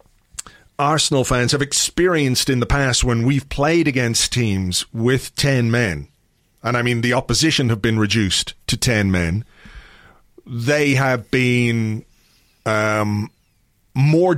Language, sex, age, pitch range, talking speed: English, male, 40-59, 115-155 Hz, 130 wpm